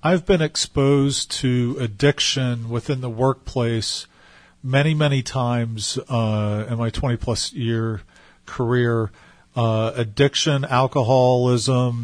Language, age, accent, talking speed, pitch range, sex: English, 40-59, American, 100 wpm, 115-135 Hz, male